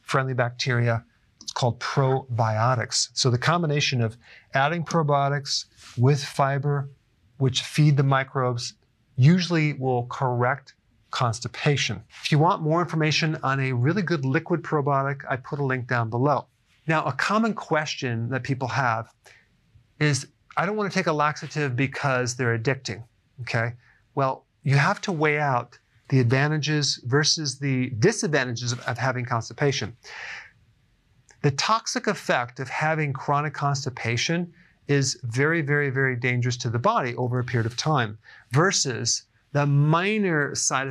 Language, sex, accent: English, male, American